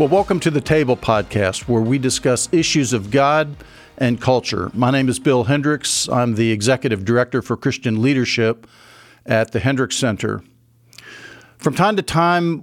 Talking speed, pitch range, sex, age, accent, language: 160 wpm, 115-140 Hz, male, 50-69, American, English